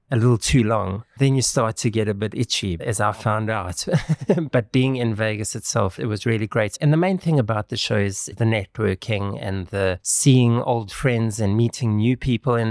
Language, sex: English, male